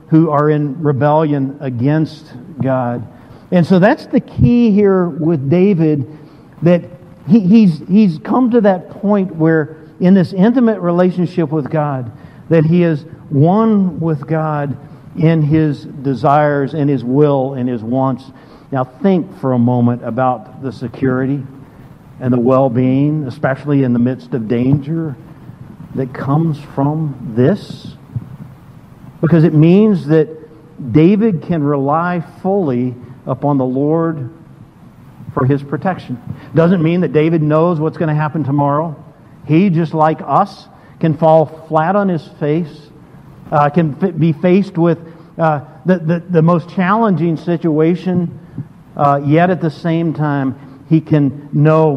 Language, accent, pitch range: English, American, 140-165 Hz